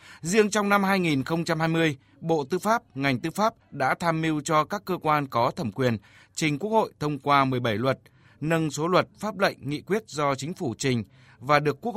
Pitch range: 125-170 Hz